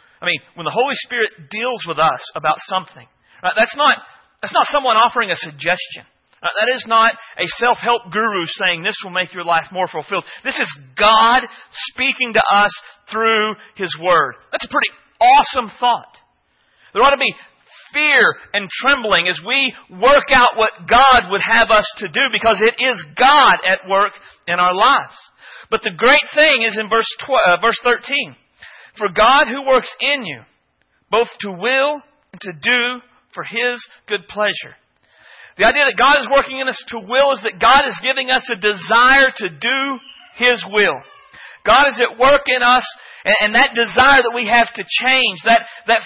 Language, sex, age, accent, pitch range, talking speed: English, male, 40-59, American, 210-270 Hz, 185 wpm